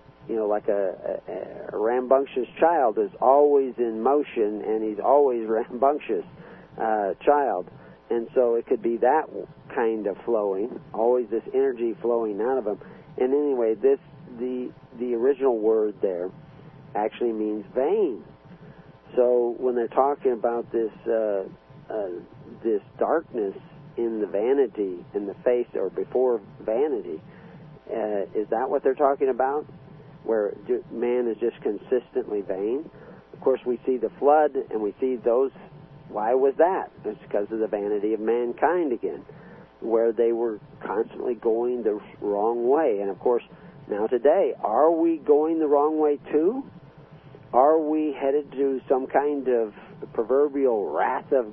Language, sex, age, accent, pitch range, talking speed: English, male, 50-69, American, 115-155 Hz, 150 wpm